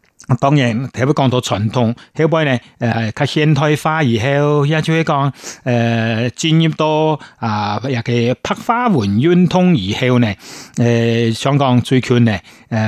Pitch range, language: 115-155 Hz, Chinese